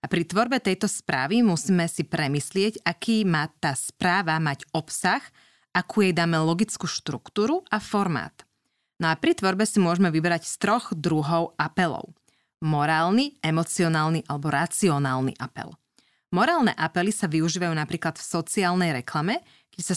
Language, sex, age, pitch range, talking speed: Slovak, female, 30-49, 155-195 Hz, 140 wpm